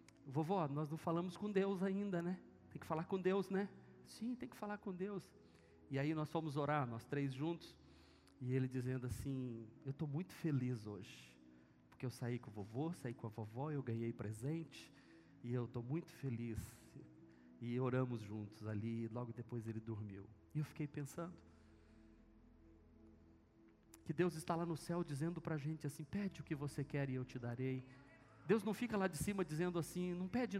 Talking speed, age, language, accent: 190 wpm, 40-59, Portuguese, Brazilian